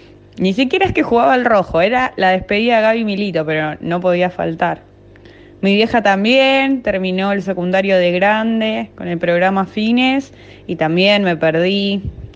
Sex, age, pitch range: female, 20-39, 170-220 Hz